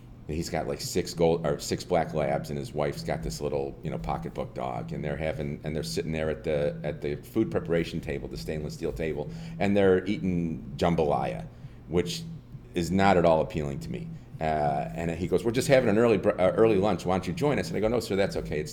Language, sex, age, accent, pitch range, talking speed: English, male, 40-59, American, 80-105 Hz, 235 wpm